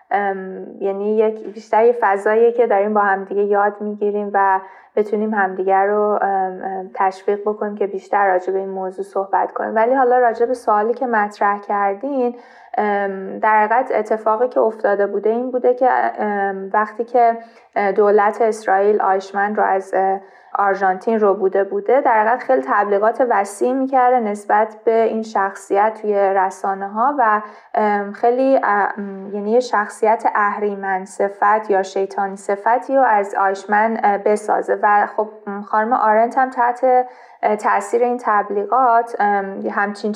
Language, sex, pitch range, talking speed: Persian, female, 195-230 Hz, 135 wpm